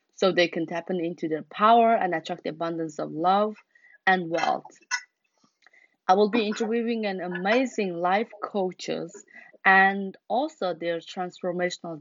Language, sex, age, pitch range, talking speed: English, female, 20-39, 180-230 Hz, 135 wpm